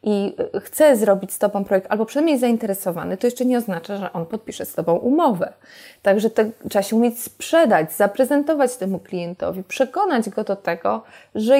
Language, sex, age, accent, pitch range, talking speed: Polish, female, 20-39, native, 200-255 Hz, 170 wpm